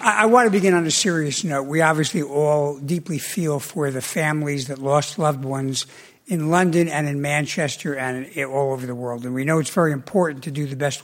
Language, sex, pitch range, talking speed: English, male, 145-180 Hz, 215 wpm